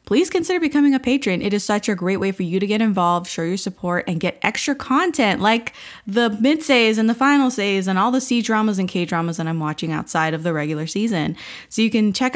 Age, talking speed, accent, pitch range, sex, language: 20-39, 230 wpm, American, 170-220 Hz, female, English